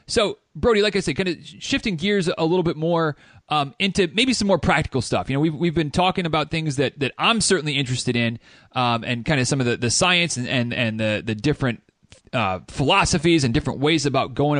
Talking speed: 225 wpm